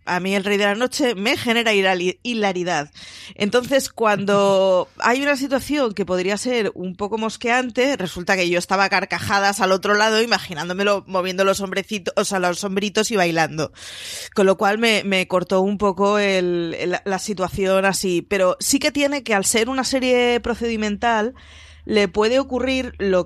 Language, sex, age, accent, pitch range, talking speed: Spanish, female, 20-39, Spanish, 180-225 Hz, 170 wpm